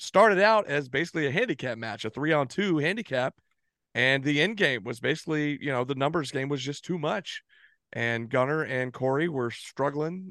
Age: 40-59